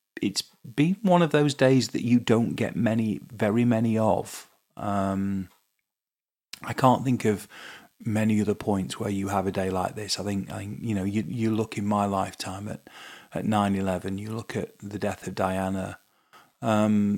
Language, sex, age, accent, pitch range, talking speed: English, male, 30-49, British, 95-110 Hz, 180 wpm